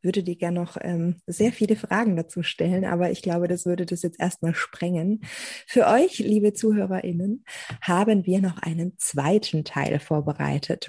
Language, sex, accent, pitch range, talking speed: German, female, German, 160-195 Hz, 165 wpm